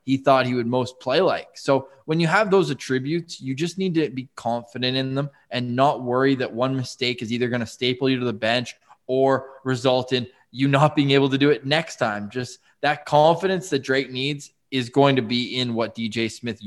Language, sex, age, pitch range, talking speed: English, male, 20-39, 125-160 Hz, 225 wpm